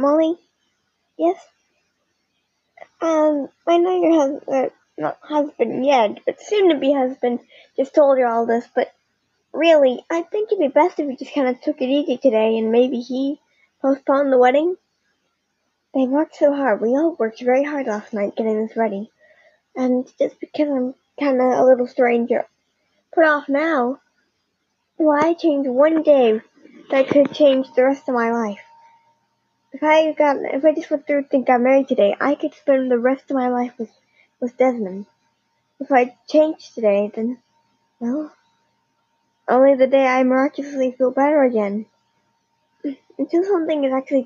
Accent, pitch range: American, 245-300 Hz